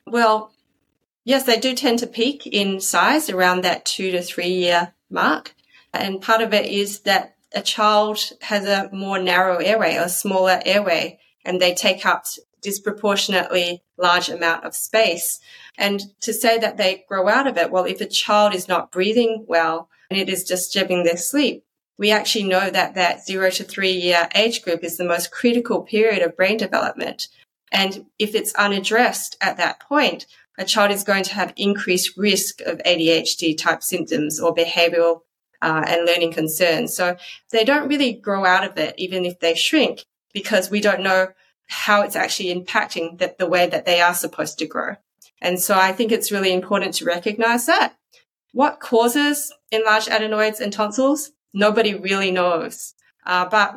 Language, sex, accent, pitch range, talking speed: English, female, Australian, 180-220 Hz, 175 wpm